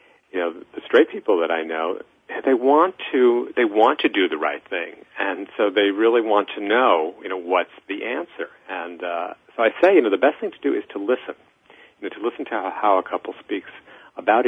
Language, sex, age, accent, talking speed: English, male, 40-59, American, 230 wpm